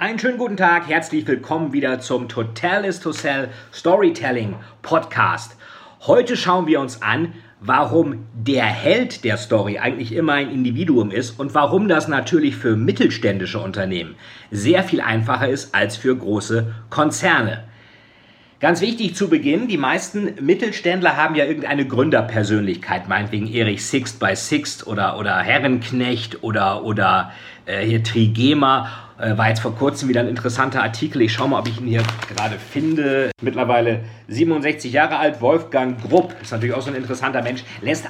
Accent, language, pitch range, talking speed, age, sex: German, German, 115-155 Hz, 155 wpm, 50-69, male